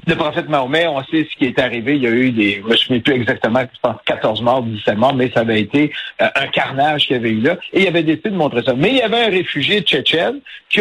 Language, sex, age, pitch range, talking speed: French, male, 60-79, 135-190 Hz, 290 wpm